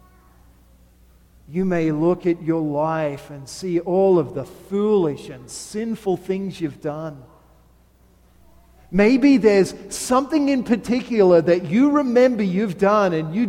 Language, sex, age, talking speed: English, male, 40-59, 130 wpm